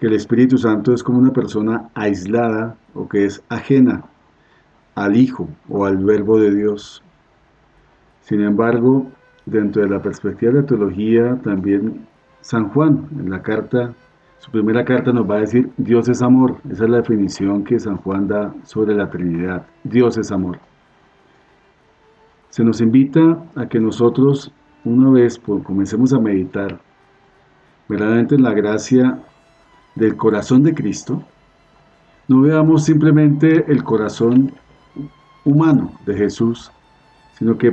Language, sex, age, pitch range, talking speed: Spanish, male, 40-59, 105-130 Hz, 140 wpm